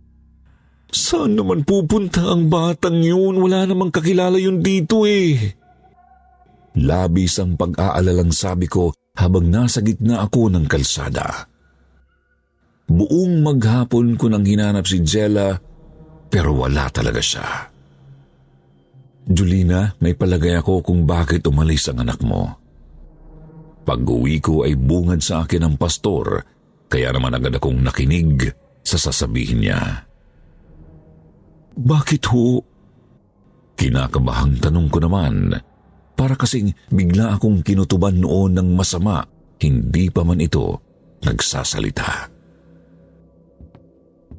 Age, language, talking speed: 50-69, Filipino, 105 wpm